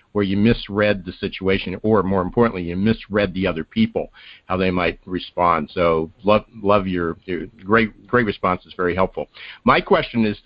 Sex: male